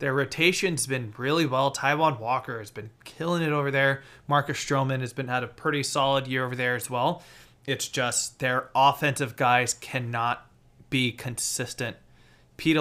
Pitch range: 120-145 Hz